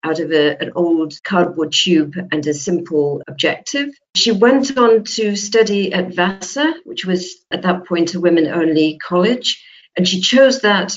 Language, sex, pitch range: English, female, 160-205 Hz